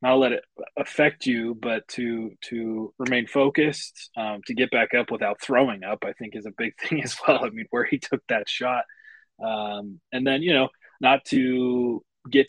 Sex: male